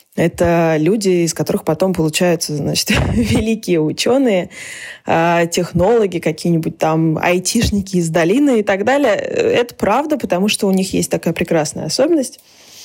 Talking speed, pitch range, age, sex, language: 130 wpm, 170-195 Hz, 20-39, female, Russian